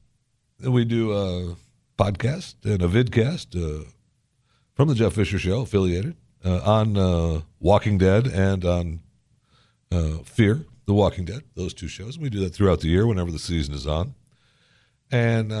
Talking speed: 160 wpm